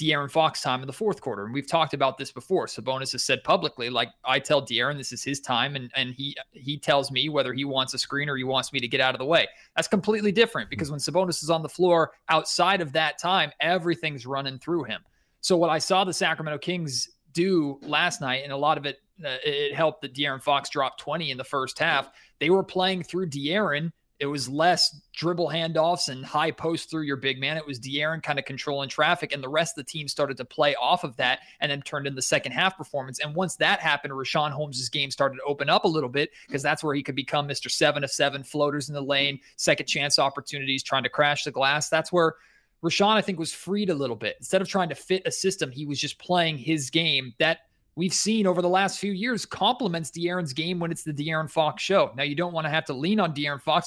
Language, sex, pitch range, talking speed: English, male, 140-170 Hz, 245 wpm